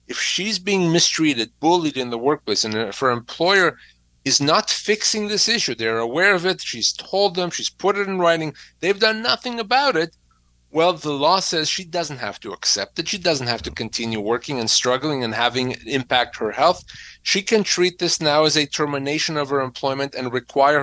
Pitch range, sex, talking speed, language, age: 130-175 Hz, male, 200 wpm, English, 30-49